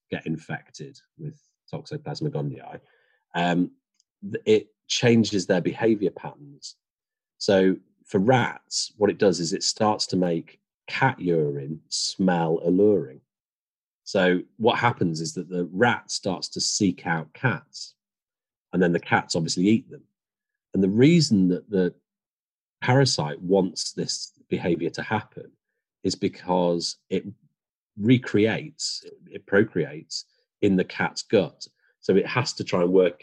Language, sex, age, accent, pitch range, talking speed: English, male, 40-59, British, 85-130 Hz, 130 wpm